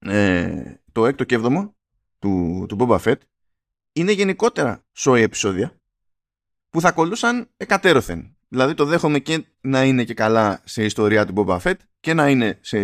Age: 20-39